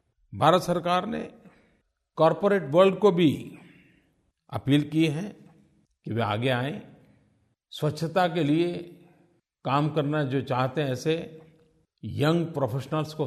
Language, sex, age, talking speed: Hindi, male, 50-69, 120 wpm